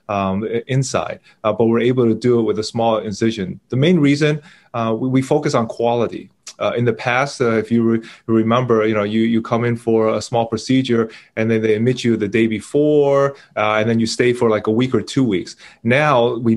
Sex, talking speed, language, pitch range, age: male, 225 wpm, English, 110-125 Hz, 20-39